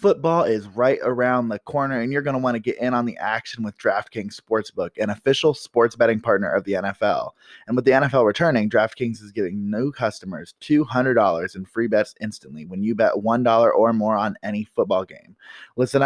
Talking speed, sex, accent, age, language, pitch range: 200 wpm, male, American, 20-39, English, 105-125 Hz